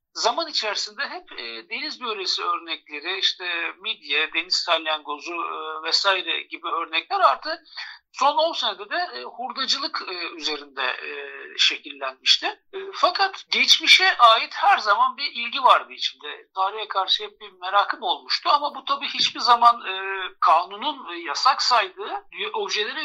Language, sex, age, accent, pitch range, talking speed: Turkish, male, 60-79, native, 200-330 Hz, 115 wpm